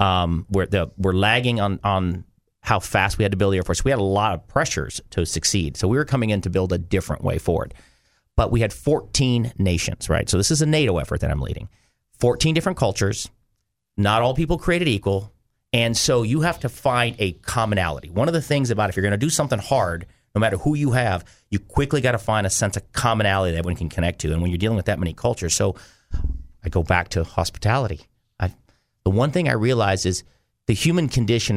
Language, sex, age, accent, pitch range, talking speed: English, male, 40-59, American, 90-120 Hz, 230 wpm